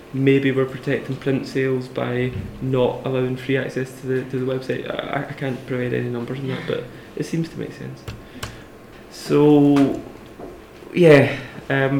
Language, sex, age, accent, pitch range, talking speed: English, male, 20-39, British, 130-140 Hz, 160 wpm